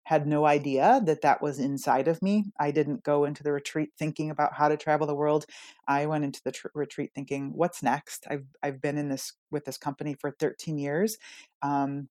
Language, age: English, 30-49